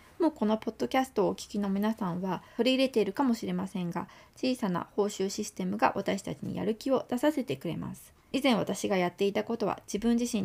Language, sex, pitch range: Japanese, female, 175-245 Hz